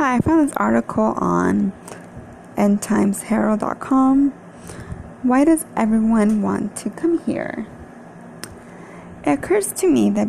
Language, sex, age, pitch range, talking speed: English, female, 20-39, 180-225 Hz, 110 wpm